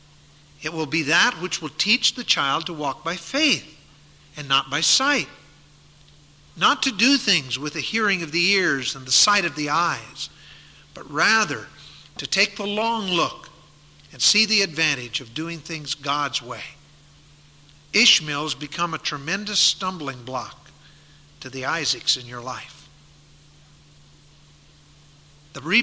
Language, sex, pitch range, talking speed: English, male, 145-195 Hz, 145 wpm